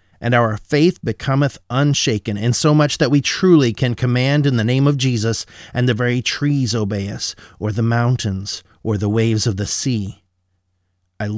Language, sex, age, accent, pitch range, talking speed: English, male, 30-49, American, 105-130 Hz, 180 wpm